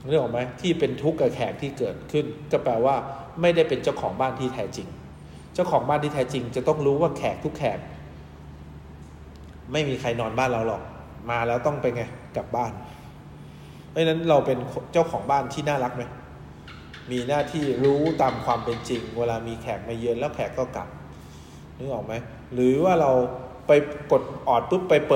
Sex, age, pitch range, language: male, 20-39, 105-150 Hz, English